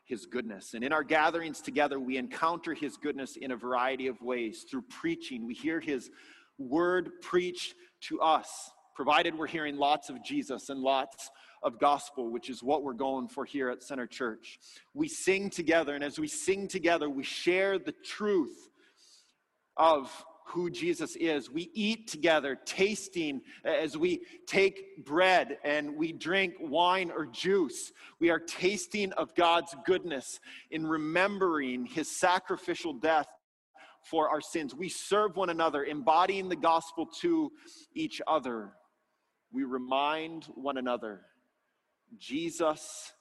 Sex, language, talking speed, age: male, English, 145 wpm, 30-49